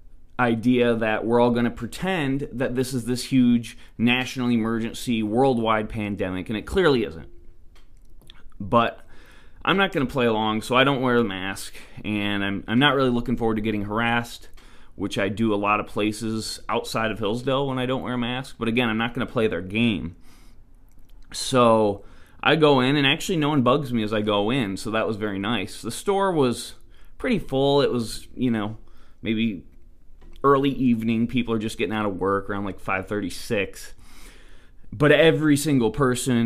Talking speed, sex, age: 190 wpm, male, 20-39